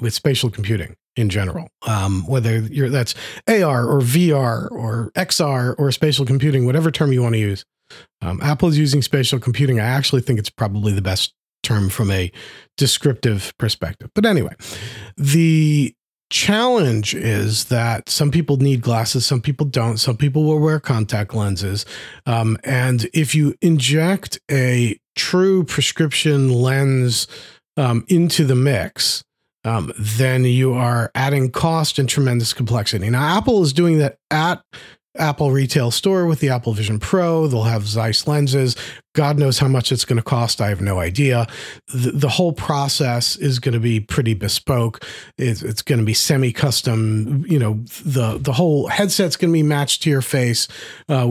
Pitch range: 115-150 Hz